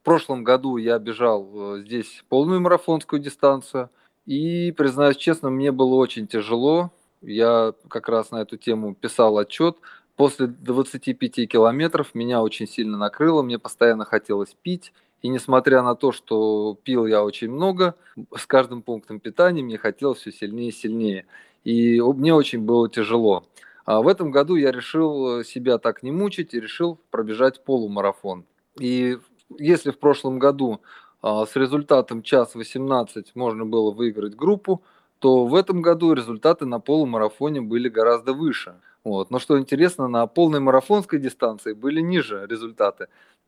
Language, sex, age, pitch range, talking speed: Russian, male, 20-39, 115-155 Hz, 150 wpm